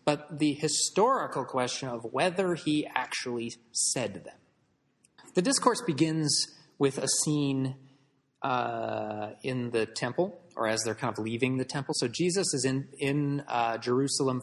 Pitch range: 125-180 Hz